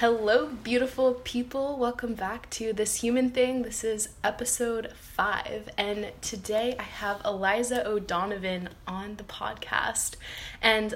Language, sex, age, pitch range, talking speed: English, female, 20-39, 175-215 Hz, 125 wpm